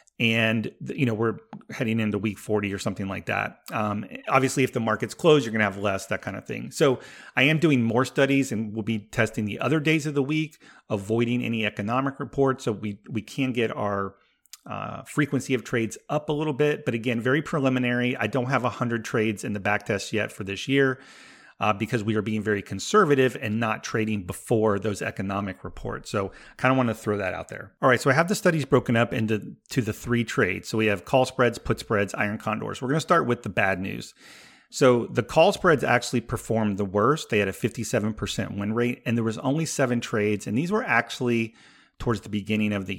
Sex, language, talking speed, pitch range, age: male, English, 225 wpm, 105-130 Hz, 40-59